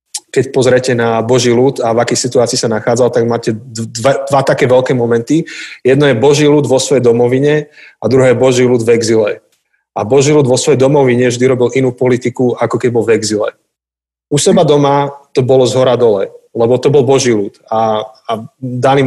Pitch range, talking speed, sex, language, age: 120-140 Hz, 200 wpm, male, Slovak, 30-49